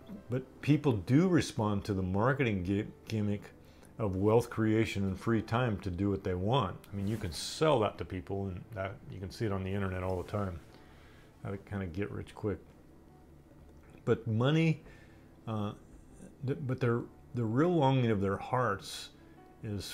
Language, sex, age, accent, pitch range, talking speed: English, male, 40-59, American, 95-120 Hz, 175 wpm